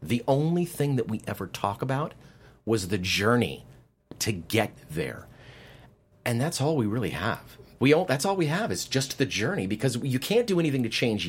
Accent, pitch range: American, 115-155 Hz